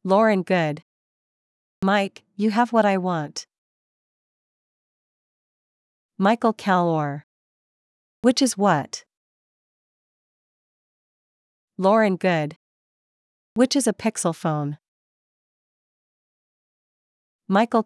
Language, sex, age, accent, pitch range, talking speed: English, female, 40-59, American, 155-215 Hz, 70 wpm